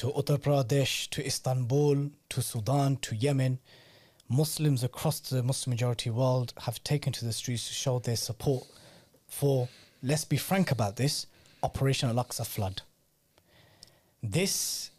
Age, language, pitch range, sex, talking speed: 30-49, English, 125-150 Hz, male, 135 wpm